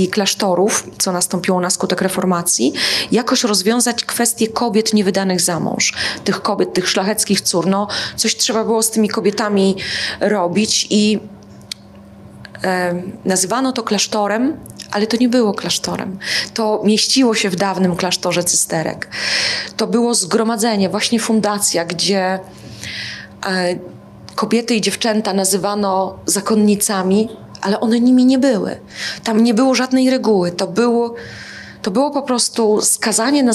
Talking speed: 130 wpm